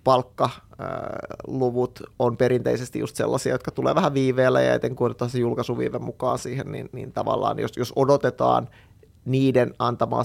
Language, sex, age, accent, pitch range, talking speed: Finnish, male, 30-49, native, 115-130 Hz, 135 wpm